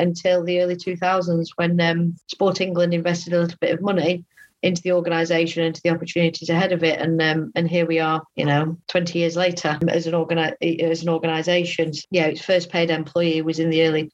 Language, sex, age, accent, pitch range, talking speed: English, female, 40-59, British, 165-190 Hz, 215 wpm